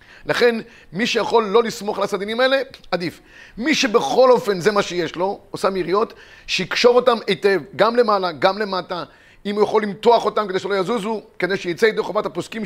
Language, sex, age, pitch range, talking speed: Hebrew, male, 30-49, 180-230 Hz, 180 wpm